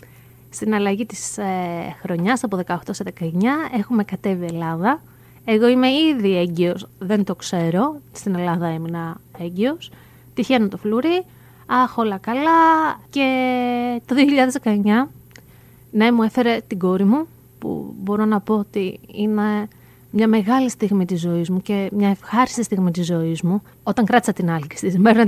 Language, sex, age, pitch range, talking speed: Greek, female, 30-49, 185-245 Hz, 150 wpm